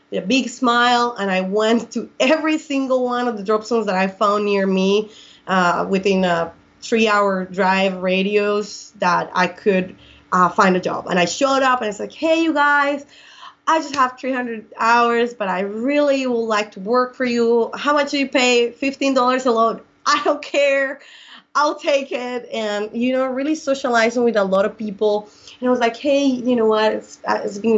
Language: English